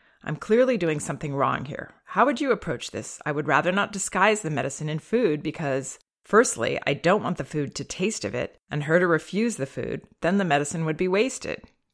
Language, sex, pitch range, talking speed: English, female, 140-180 Hz, 215 wpm